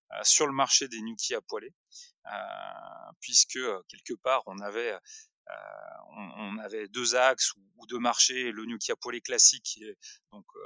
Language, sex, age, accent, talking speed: French, male, 30-49, French, 160 wpm